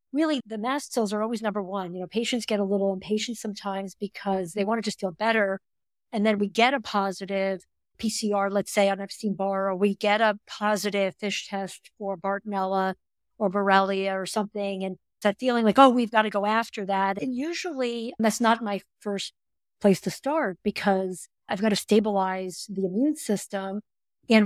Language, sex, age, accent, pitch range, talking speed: English, female, 50-69, American, 195-225 Hz, 190 wpm